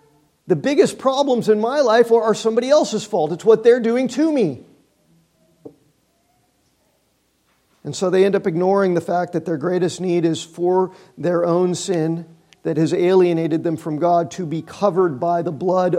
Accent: American